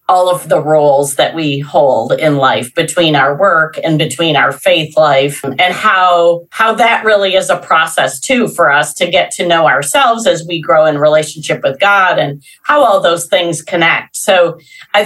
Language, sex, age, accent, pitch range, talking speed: English, female, 40-59, American, 155-205 Hz, 190 wpm